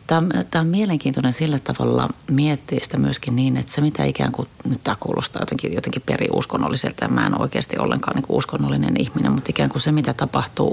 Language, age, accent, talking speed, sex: Finnish, 30-49, native, 190 wpm, female